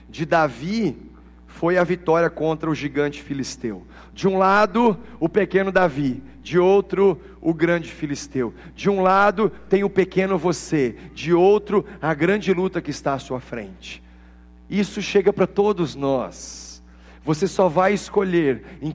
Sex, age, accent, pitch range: male, 40-59, Brazilian, 160-250 Hz